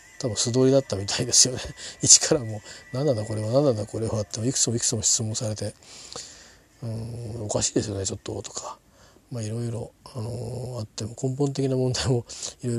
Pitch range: 110-135 Hz